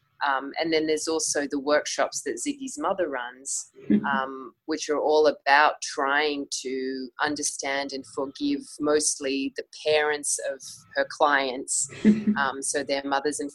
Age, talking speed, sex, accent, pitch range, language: 20-39, 140 wpm, female, Australian, 135-170 Hz, English